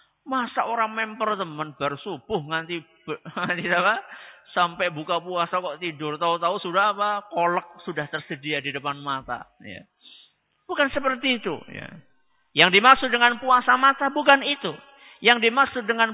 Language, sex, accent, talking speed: Indonesian, male, native, 130 wpm